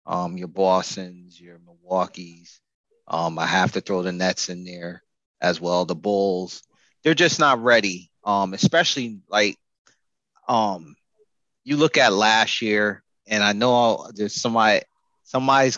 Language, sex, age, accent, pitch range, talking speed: English, male, 30-49, American, 100-125 Hz, 140 wpm